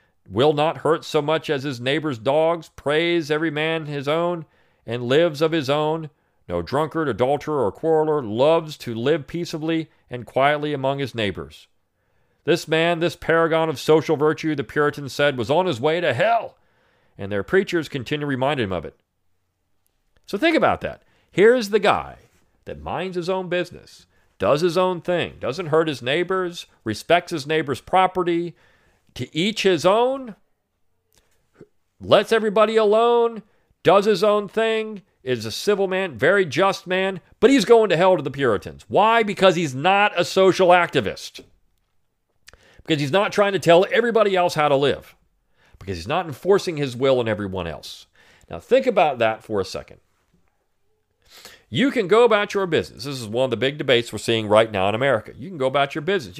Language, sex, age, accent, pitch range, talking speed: English, male, 40-59, American, 130-185 Hz, 175 wpm